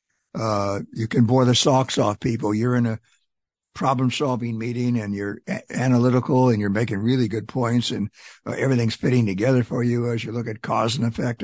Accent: American